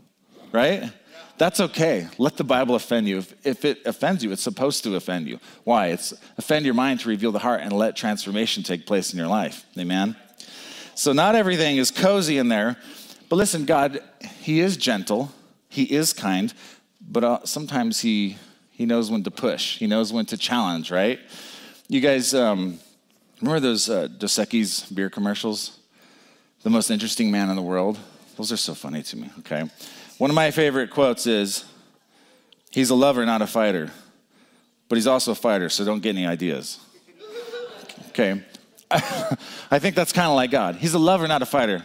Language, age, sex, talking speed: English, 40-59, male, 180 wpm